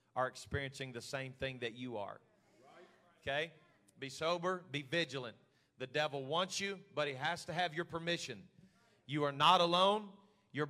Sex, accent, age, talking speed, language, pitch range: male, American, 40-59, 165 wpm, English, 135-175 Hz